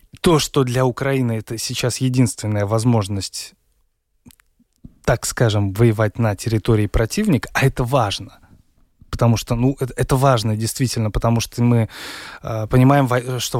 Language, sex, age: Russian, male, 20-39